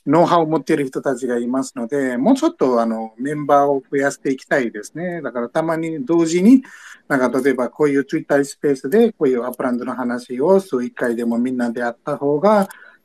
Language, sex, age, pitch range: Japanese, male, 50-69, 125-170 Hz